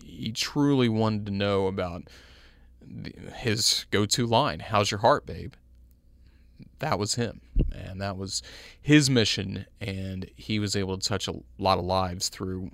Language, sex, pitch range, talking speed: English, male, 95-110 Hz, 150 wpm